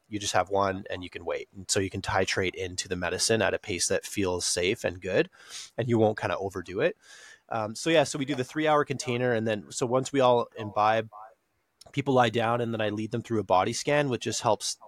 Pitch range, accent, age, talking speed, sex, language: 100-135 Hz, American, 30-49, 250 wpm, male, English